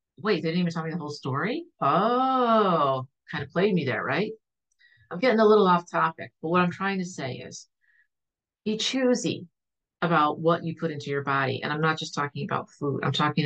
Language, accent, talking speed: English, American, 210 wpm